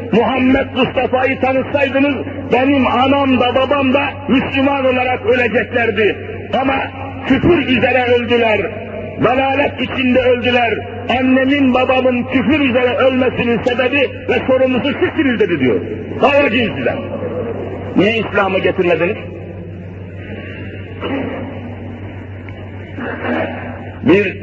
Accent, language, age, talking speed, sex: native, Turkish, 60-79, 85 wpm, male